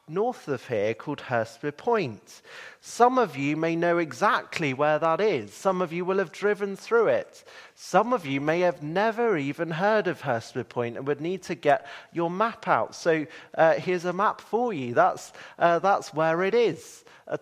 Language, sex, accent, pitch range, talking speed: English, male, British, 155-215 Hz, 195 wpm